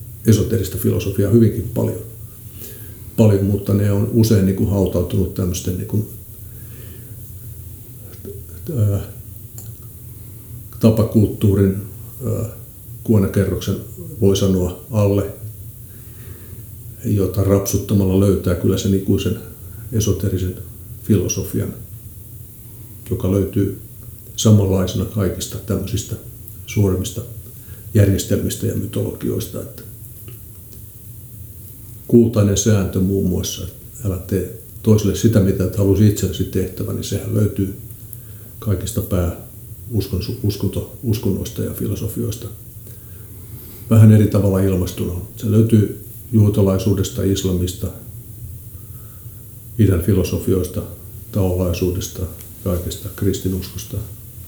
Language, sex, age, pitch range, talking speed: Finnish, male, 60-79, 100-110 Hz, 70 wpm